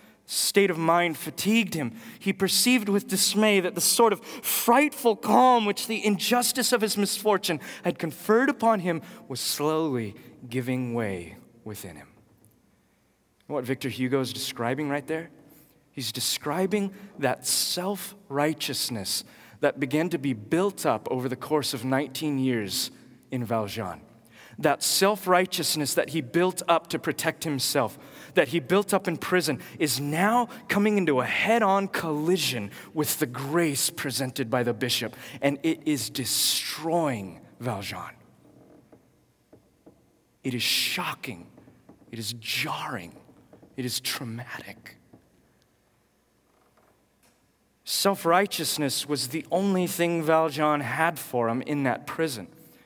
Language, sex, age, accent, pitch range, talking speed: English, male, 30-49, American, 130-190 Hz, 130 wpm